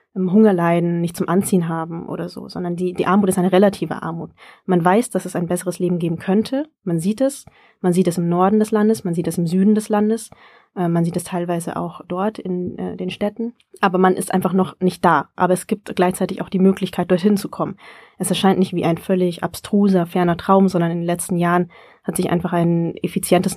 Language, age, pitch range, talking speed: German, 20-39, 175-200 Hz, 225 wpm